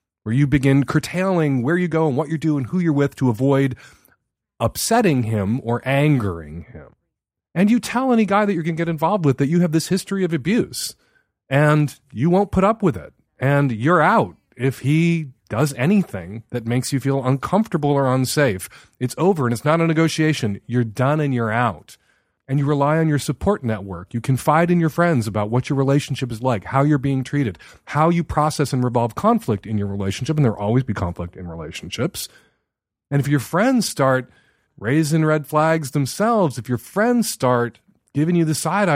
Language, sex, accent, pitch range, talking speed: English, male, American, 120-160 Hz, 195 wpm